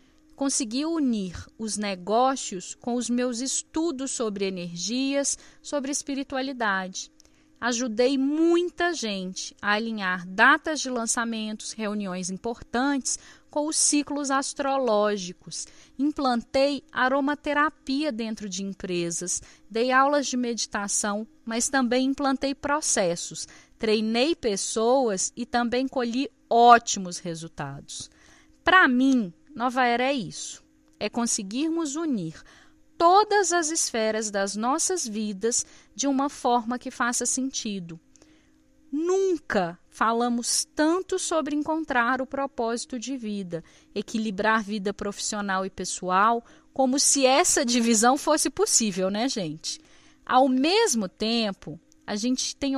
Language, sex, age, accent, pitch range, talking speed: Portuguese, female, 10-29, Brazilian, 215-285 Hz, 110 wpm